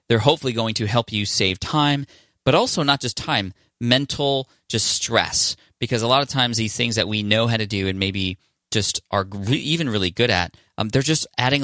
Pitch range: 100-125 Hz